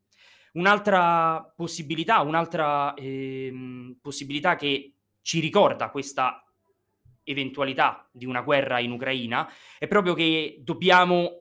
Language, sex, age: Italian, male, 20-39